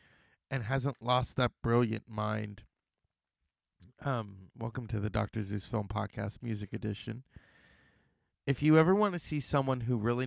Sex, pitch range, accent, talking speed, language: male, 120-195 Hz, American, 145 wpm, English